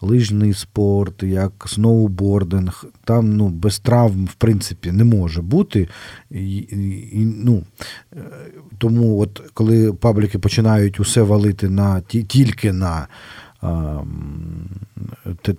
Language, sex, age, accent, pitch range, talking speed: Ukrainian, male, 40-59, native, 90-110 Hz, 110 wpm